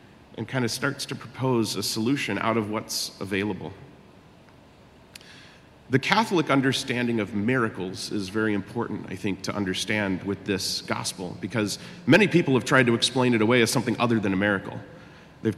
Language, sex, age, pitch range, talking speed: English, male, 40-59, 105-125 Hz, 165 wpm